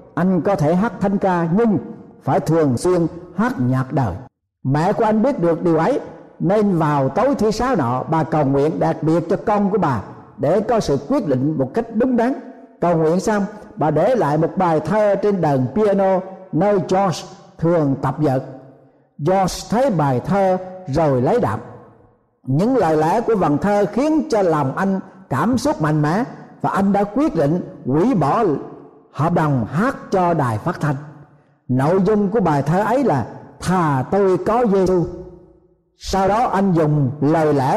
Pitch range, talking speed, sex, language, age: 150-200 Hz, 180 wpm, male, Vietnamese, 60-79